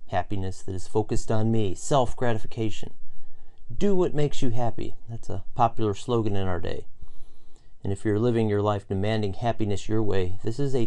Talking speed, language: 175 wpm, English